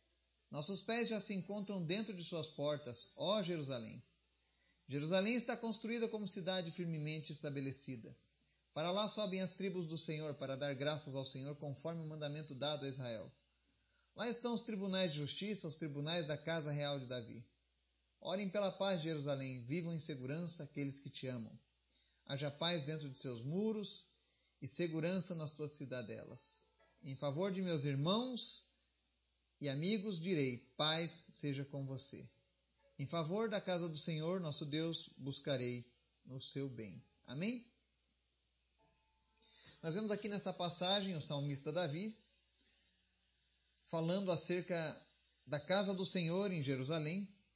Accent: Brazilian